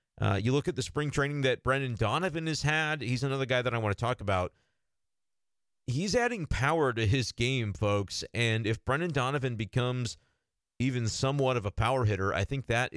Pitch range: 110-135 Hz